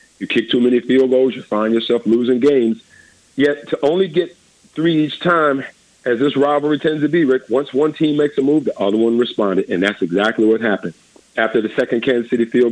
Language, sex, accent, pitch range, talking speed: English, male, American, 110-135 Hz, 215 wpm